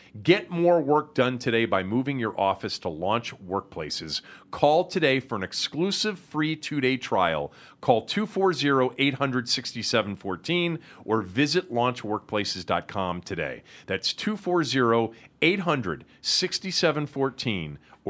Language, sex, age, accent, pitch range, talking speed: English, male, 40-59, American, 110-165 Hz, 95 wpm